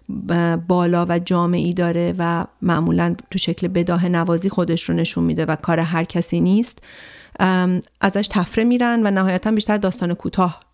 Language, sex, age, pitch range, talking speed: Persian, female, 40-59, 175-200 Hz, 150 wpm